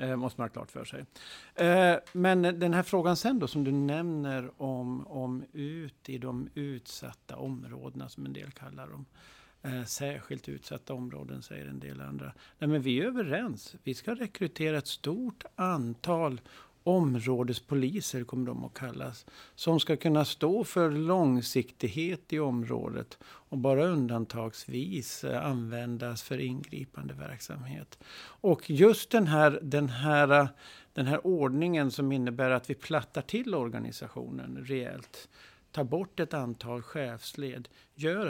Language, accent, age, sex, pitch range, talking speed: Swedish, native, 50-69, male, 125-165 Hz, 130 wpm